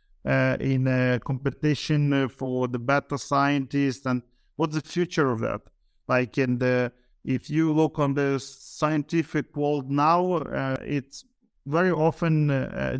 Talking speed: 140 wpm